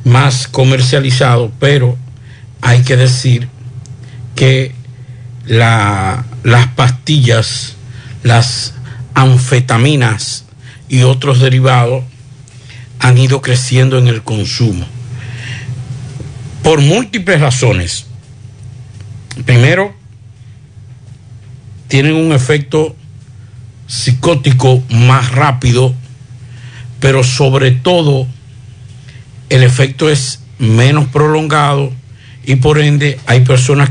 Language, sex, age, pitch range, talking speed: Spanish, male, 60-79, 120-140 Hz, 75 wpm